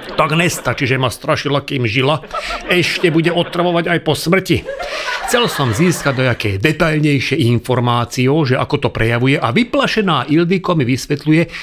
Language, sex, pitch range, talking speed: Slovak, male, 145-200 Hz, 140 wpm